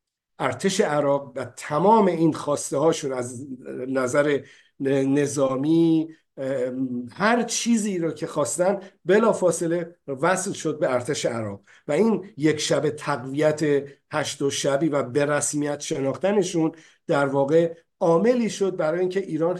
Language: English